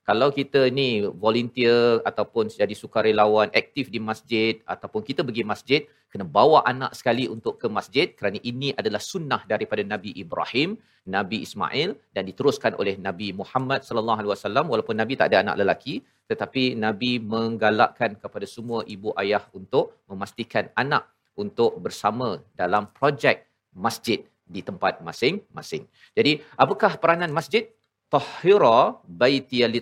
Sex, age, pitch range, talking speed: male, 40-59, 115-140 Hz, 135 wpm